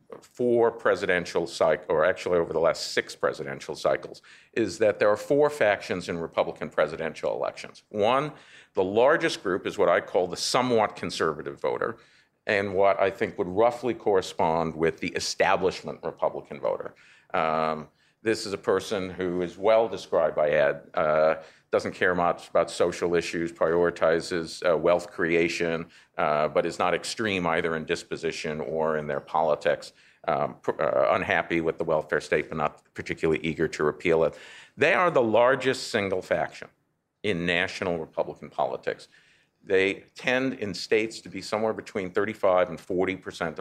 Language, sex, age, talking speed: English, male, 50-69, 155 wpm